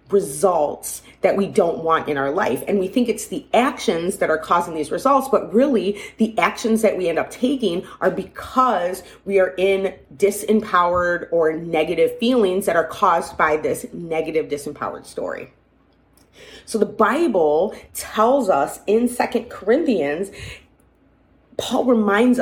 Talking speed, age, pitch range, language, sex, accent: 145 wpm, 30-49, 175-220 Hz, English, female, American